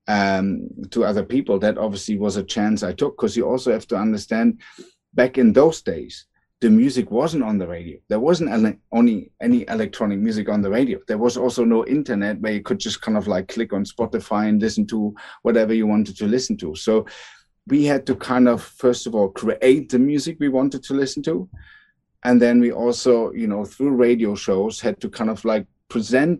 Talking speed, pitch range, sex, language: 210 wpm, 100-135 Hz, male, Arabic